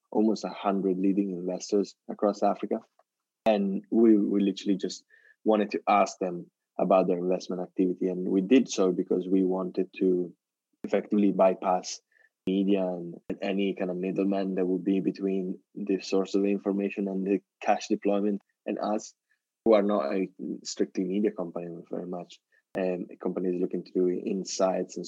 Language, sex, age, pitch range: English, male, 20-39, 90-100 Hz